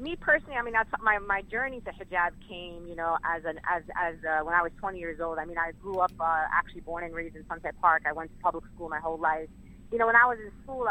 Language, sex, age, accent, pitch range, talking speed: English, female, 30-49, American, 165-205 Hz, 290 wpm